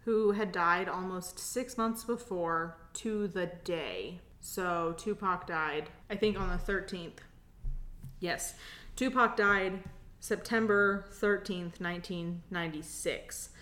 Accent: American